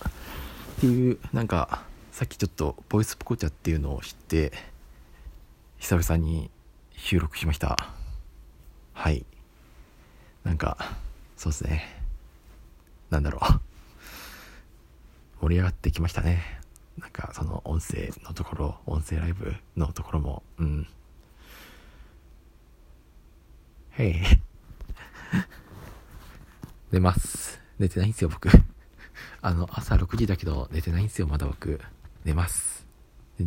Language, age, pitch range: Japanese, 40-59, 75-95 Hz